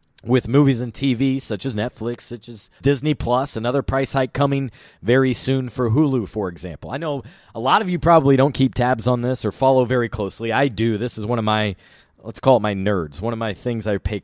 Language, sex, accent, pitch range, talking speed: English, male, American, 110-135 Hz, 230 wpm